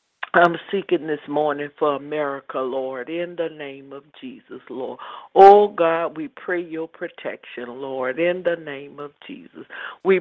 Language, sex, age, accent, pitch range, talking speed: English, female, 50-69, American, 150-190 Hz, 155 wpm